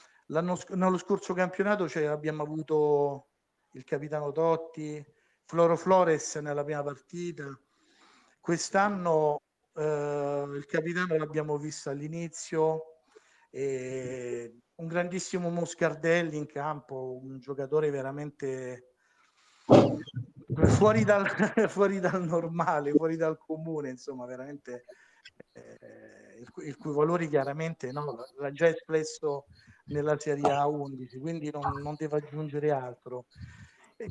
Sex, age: male, 50-69